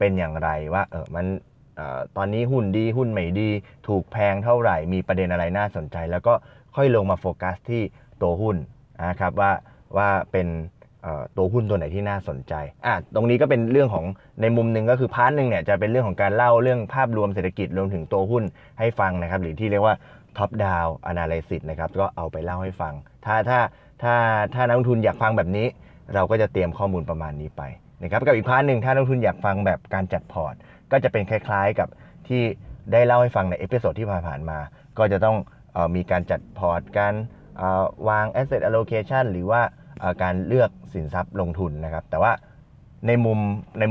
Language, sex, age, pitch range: Thai, male, 20-39, 90-115 Hz